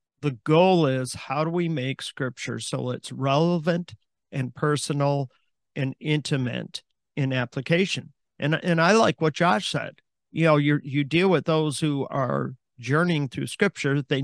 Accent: American